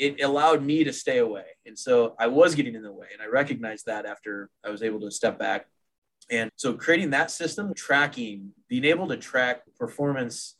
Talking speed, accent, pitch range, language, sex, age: 205 wpm, American, 120-150 Hz, English, male, 20-39